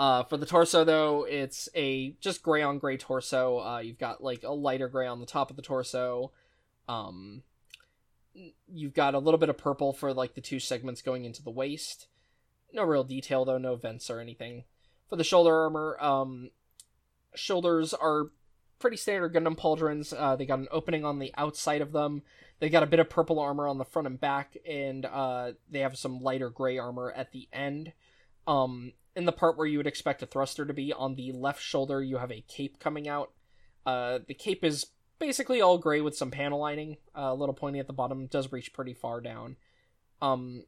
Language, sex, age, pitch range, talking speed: English, male, 20-39, 125-150 Hz, 210 wpm